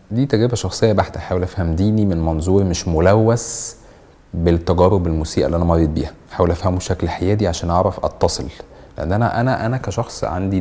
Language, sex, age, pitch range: Arabic, male, 30-49, 80-105 Hz